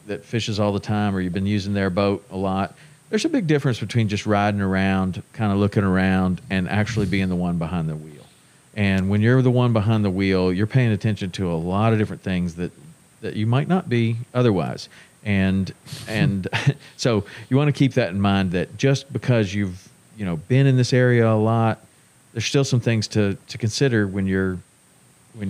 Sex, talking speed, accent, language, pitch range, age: male, 210 wpm, American, English, 95-125 Hz, 40-59